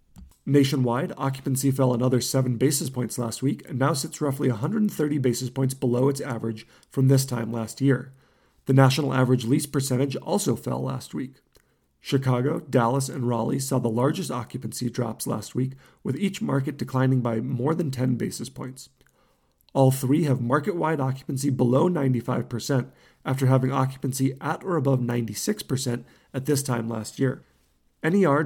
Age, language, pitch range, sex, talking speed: 40-59, English, 125-140 Hz, male, 155 wpm